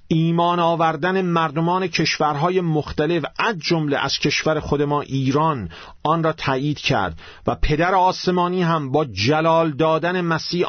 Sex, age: male, 50-69